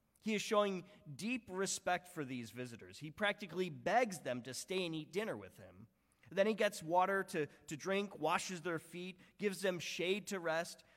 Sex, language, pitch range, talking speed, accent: male, English, 155-205 Hz, 185 wpm, American